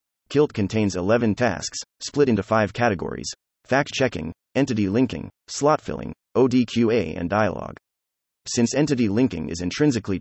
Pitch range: 90-125 Hz